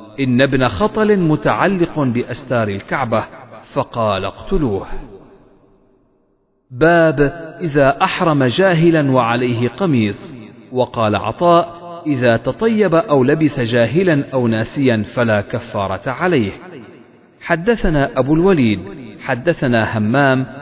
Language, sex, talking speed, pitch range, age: Arabic, male, 90 wpm, 115-165 Hz, 40-59